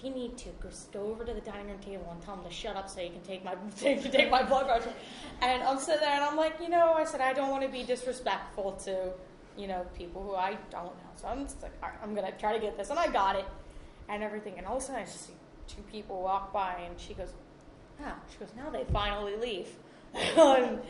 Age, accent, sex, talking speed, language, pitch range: 20-39, American, female, 265 wpm, English, 195-285 Hz